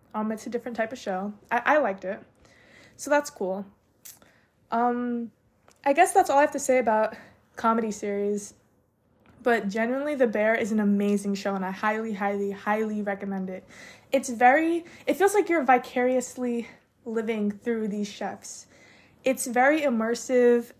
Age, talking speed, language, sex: 20-39, 160 wpm, English, female